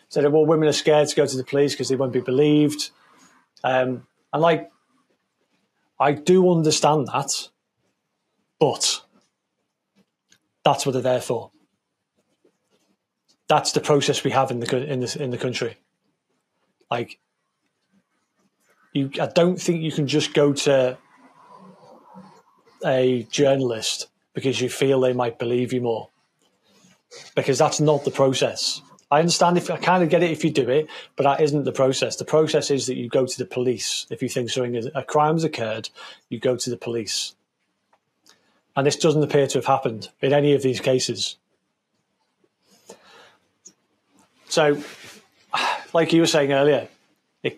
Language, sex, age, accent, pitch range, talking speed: English, male, 30-49, British, 130-150 Hz, 155 wpm